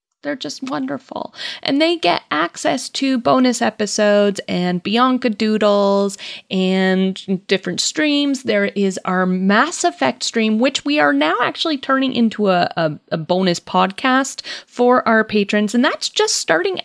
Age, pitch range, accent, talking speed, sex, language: 30-49, 210-295 Hz, American, 145 wpm, female, English